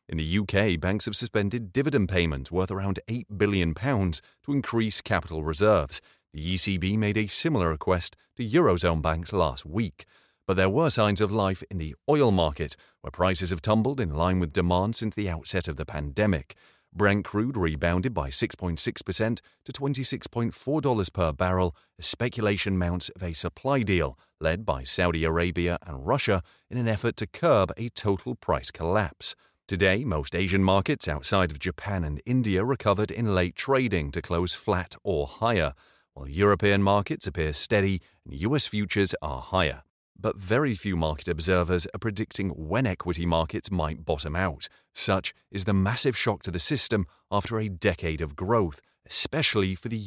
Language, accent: English, British